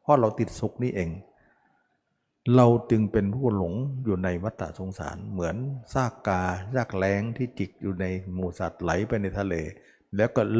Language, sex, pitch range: Thai, male, 90-115 Hz